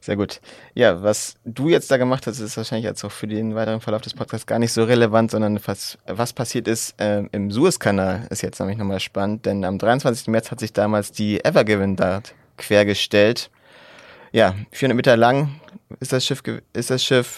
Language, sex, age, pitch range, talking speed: German, male, 30-49, 105-120 Hz, 205 wpm